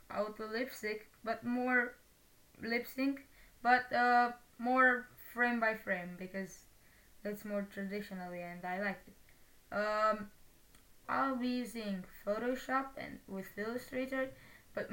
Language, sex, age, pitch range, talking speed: Romanian, female, 10-29, 205-250 Hz, 115 wpm